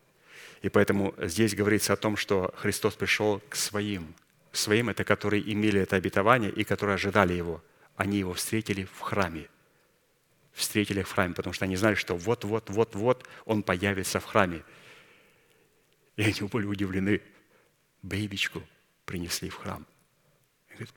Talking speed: 135 wpm